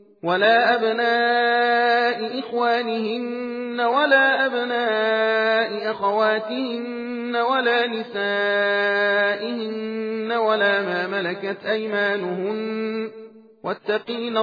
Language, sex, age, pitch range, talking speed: Persian, male, 40-59, 205-240 Hz, 55 wpm